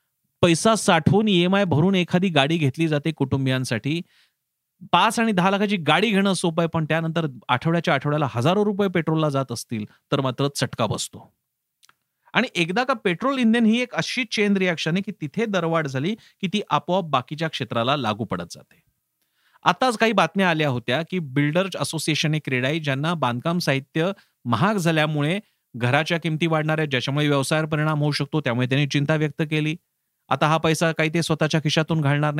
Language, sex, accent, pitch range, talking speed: Marathi, male, native, 140-170 Hz, 155 wpm